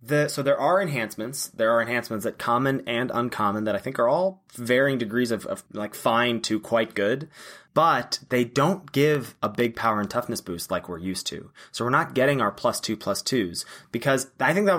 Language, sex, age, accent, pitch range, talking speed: English, male, 20-39, American, 110-135 Hz, 210 wpm